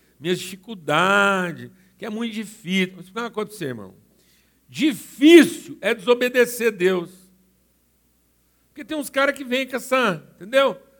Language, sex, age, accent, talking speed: Portuguese, male, 60-79, Brazilian, 135 wpm